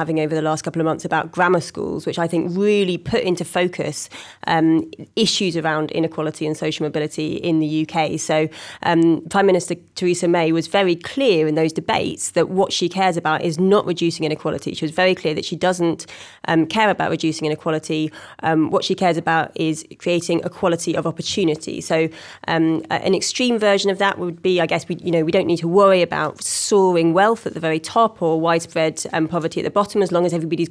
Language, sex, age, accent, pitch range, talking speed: English, female, 30-49, British, 160-185 Hz, 210 wpm